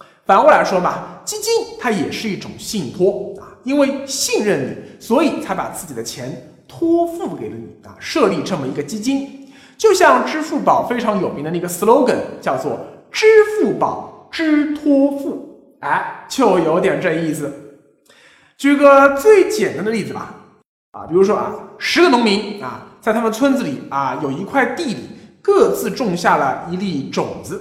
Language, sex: Chinese, male